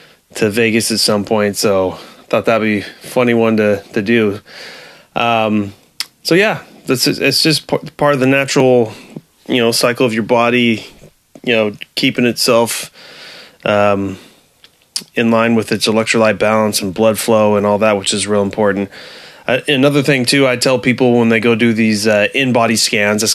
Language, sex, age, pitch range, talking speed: English, male, 20-39, 105-120 Hz, 175 wpm